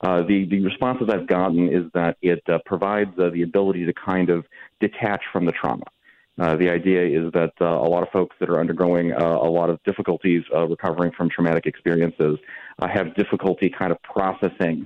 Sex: male